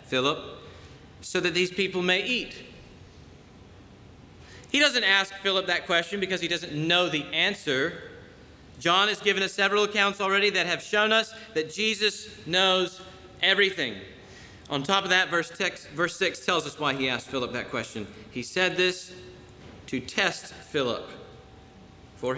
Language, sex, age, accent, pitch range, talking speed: English, male, 40-59, American, 140-195 Hz, 150 wpm